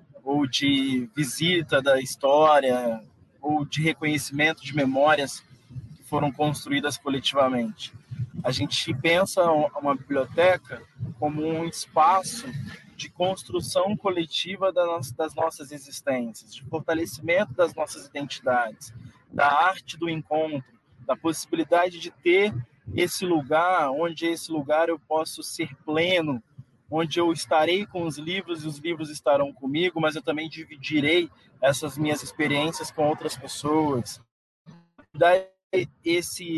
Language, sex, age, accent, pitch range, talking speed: Portuguese, male, 20-39, Brazilian, 145-170 Hz, 120 wpm